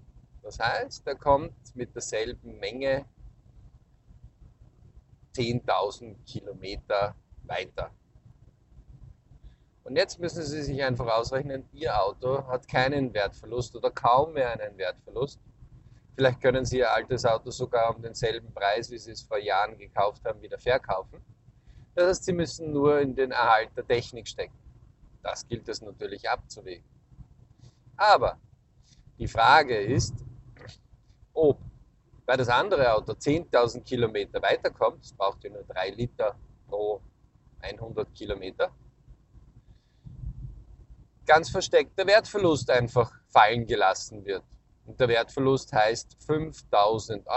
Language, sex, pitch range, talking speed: German, male, 115-145 Hz, 120 wpm